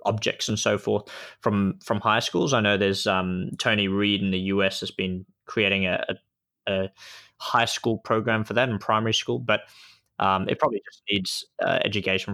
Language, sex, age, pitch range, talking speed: English, male, 20-39, 90-105 Hz, 190 wpm